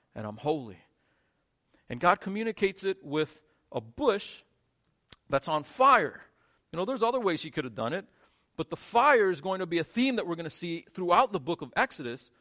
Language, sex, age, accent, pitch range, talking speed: English, male, 40-59, American, 125-175 Hz, 205 wpm